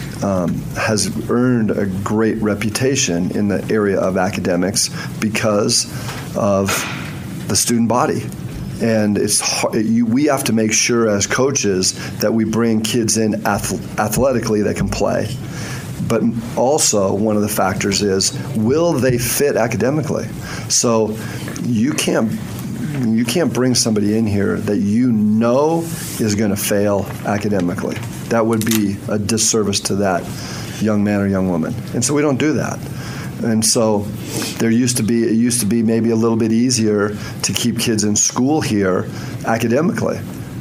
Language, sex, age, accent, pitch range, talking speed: English, male, 40-59, American, 100-120 Hz, 155 wpm